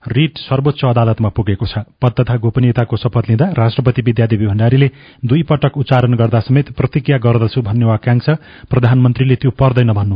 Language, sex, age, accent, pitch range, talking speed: English, male, 30-49, Indian, 115-135 Hz, 140 wpm